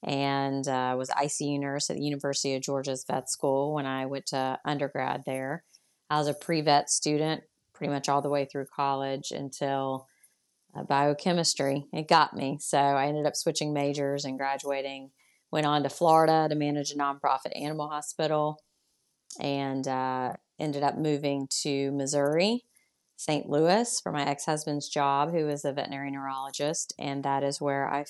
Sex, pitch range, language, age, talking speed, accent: female, 140-165 Hz, English, 30-49, 165 wpm, American